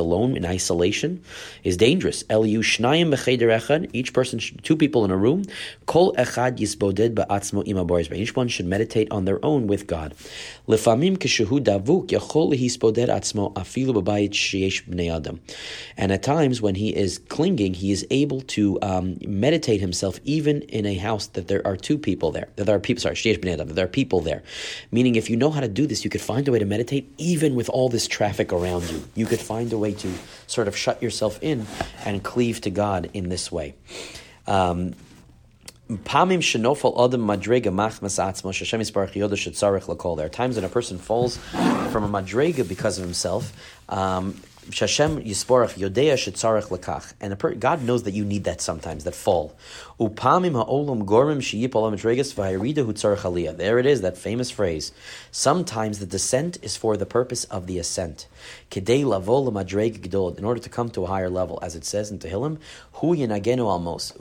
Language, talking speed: English, 140 wpm